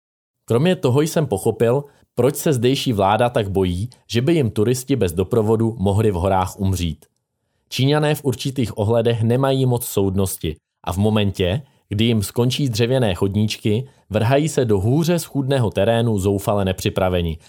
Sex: male